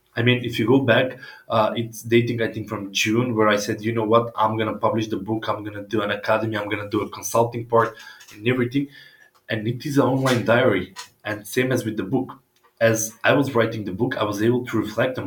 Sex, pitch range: male, 105-120 Hz